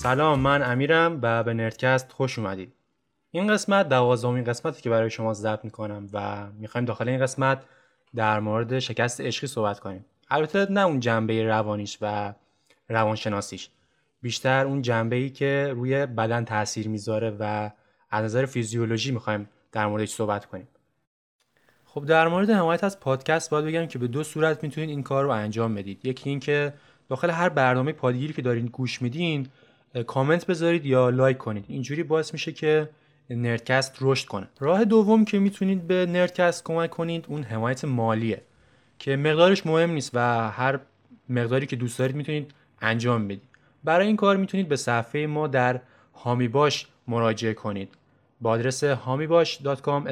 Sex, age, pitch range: male, 20-39, 115-155 Hz